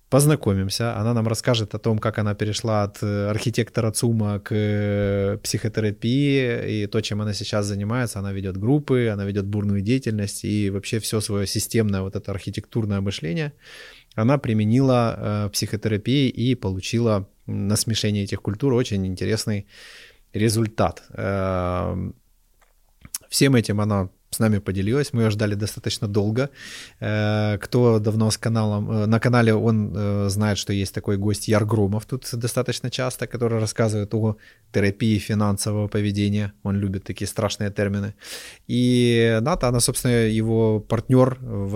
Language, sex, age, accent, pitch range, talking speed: Russian, male, 20-39, native, 100-115 Hz, 140 wpm